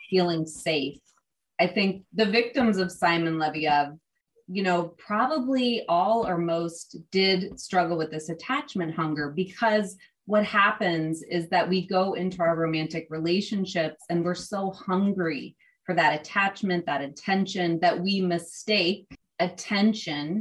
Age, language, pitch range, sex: 30-49, English, 165-200 Hz, female